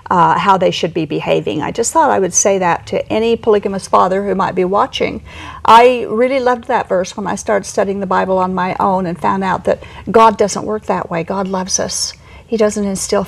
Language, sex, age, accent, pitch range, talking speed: English, female, 50-69, American, 200-250 Hz, 225 wpm